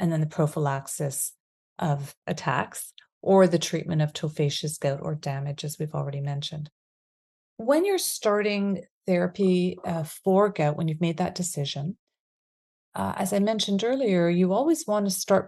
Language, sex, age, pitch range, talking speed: English, female, 40-59, 155-195 Hz, 155 wpm